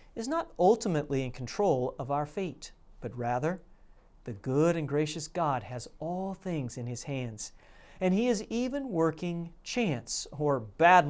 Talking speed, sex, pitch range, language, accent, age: 155 wpm, male, 135-195 Hz, English, American, 40-59